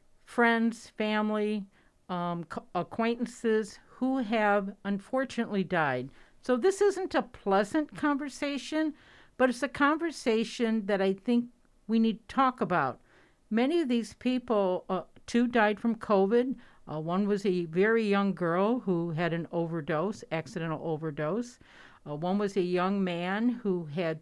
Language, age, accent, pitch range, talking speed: English, 50-69, American, 175-230 Hz, 140 wpm